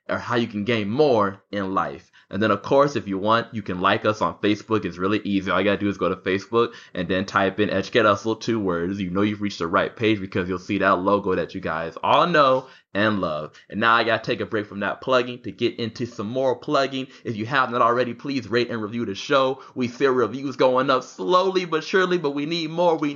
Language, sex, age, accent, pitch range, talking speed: English, male, 20-39, American, 105-135 Hz, 255 wpm